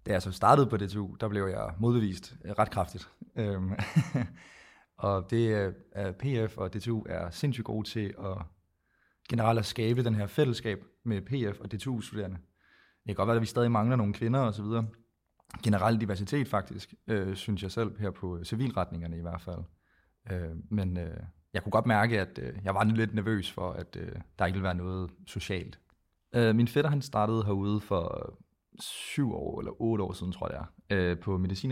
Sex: male